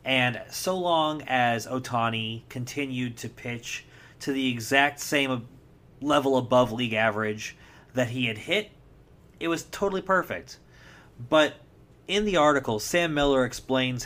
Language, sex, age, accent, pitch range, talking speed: English, male, 30-49, American, 120-155 Hz, 130 wpm